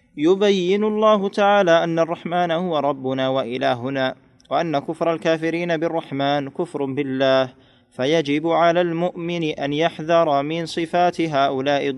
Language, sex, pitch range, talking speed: Arabic, male, 135-165 Hz, 110 wpm